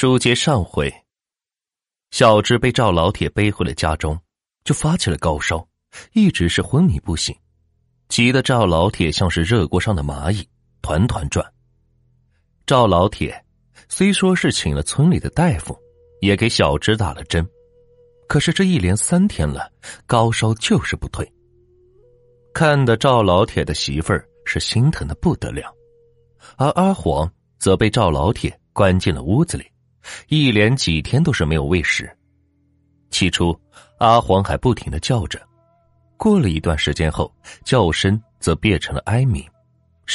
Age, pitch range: 30-49, 85-125 Hz